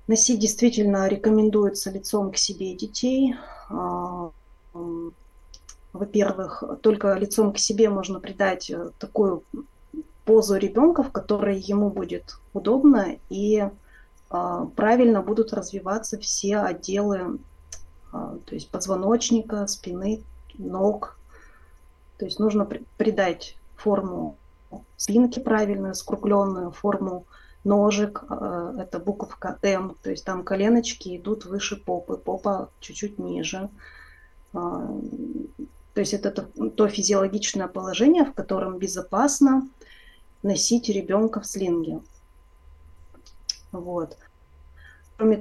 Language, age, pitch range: Russian, 30-49, 185-220 Hz